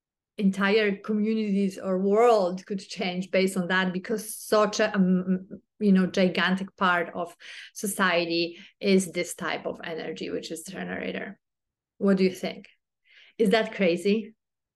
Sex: female